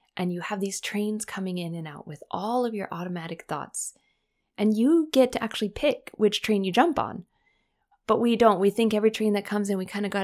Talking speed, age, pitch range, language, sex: 235 wpm, 20-39, 175-220 Hz, English, female